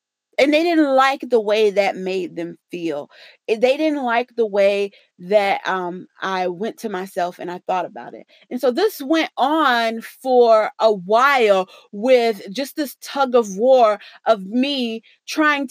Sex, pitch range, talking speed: female, 215-280 Hz, 165 wpm